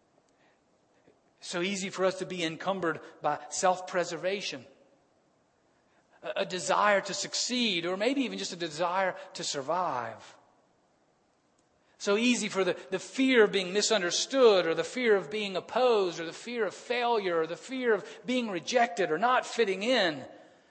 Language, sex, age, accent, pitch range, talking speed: English, male, 40-59, American, 185-255 Hz, 150 wpm